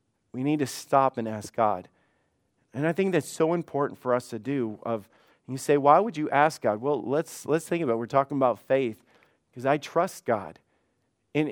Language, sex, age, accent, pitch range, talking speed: English, male, 40-59, American, 120-145 Hz, 210 wpm